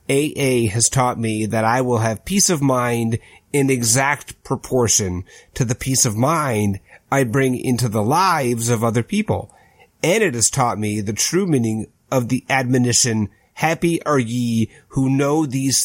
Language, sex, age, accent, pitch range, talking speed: English, male, 30-49, American, 115-140 Hz, 165 wpm